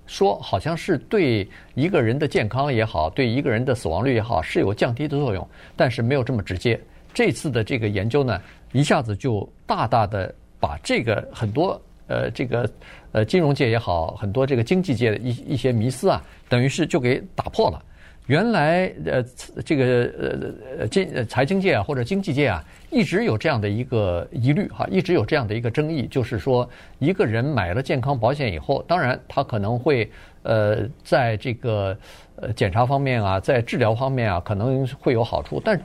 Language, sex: Chinese, male